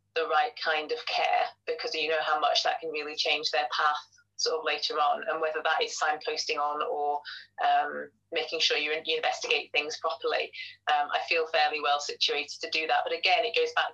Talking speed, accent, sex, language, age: 210 wpm, British, female, English, 30-49